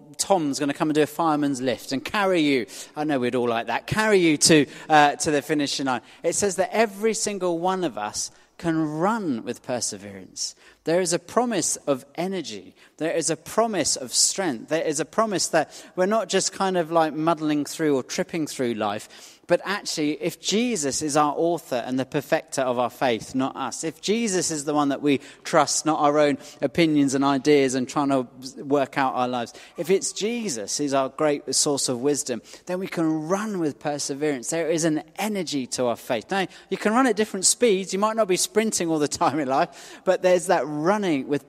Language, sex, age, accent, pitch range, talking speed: English, male, 30-49, British, 140-180 Hz, 215 wpm